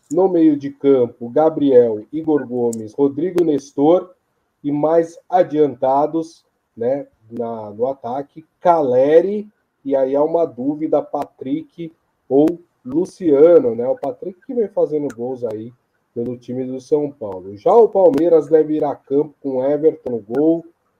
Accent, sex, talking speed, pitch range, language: Brazilian, male, 140 wpm, 135-180 Hz, Portuguese